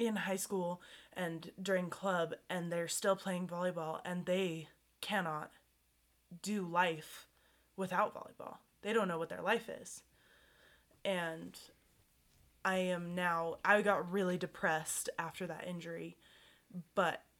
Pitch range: 165-185 Hz